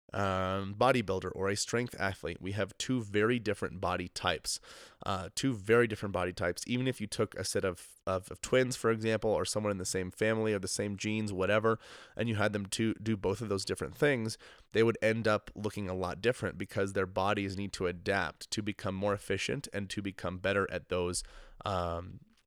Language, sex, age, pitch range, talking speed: English, male, 30-49, 95-110 Hz, 210 wpm